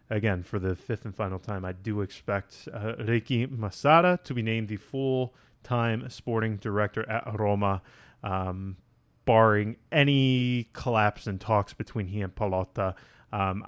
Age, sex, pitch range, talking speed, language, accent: 30-49, male, 105-125 Hz, 145 wpm, English, American